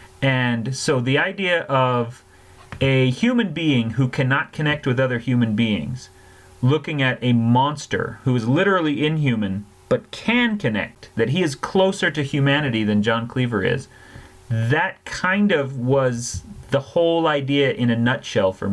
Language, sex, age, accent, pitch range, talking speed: English, male, 30-49, American, 115-140 Hz, 150 wpm